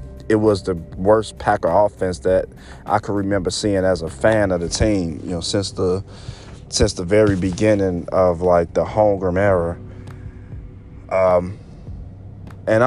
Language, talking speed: English, 150 wpm